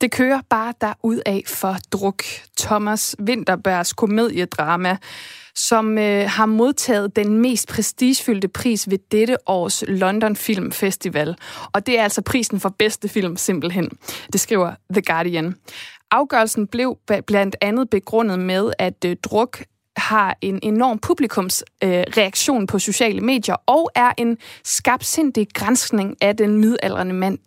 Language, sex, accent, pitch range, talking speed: Danish, female, native, 195-225 Hz, 135 wpm